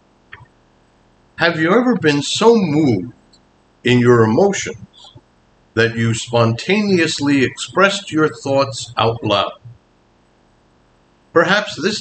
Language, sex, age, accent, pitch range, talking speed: English, male, 60-79, American, 115-150 Hz, 95 wpm